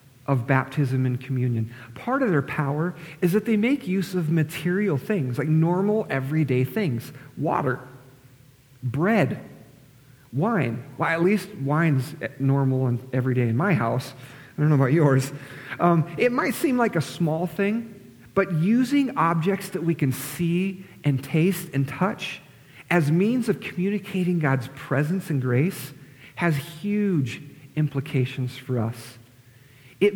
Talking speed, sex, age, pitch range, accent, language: 140 wpm, male, 40-59, 130-180 Hz, American, English